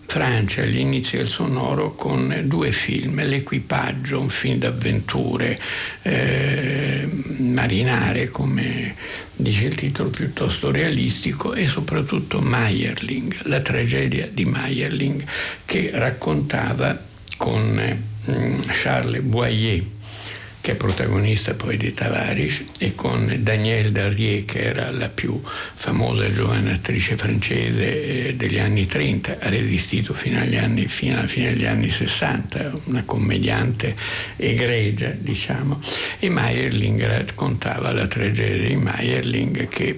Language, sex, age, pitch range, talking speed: Italian, male, 60-79, 100-130 Hz, 115 wpm